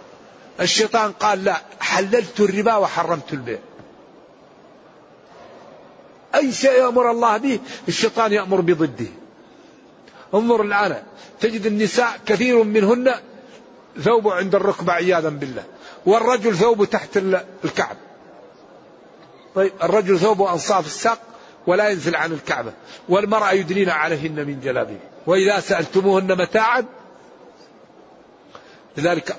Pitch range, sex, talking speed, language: 170-215 Hz, male, 100 wpm, Arabic